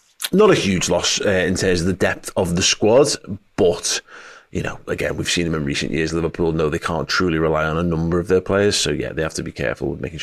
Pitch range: 85-105 Hz